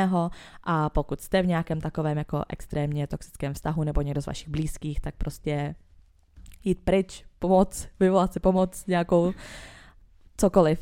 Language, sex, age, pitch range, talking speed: Czech, female, 20-39, 150-165 Hz, 140 wpm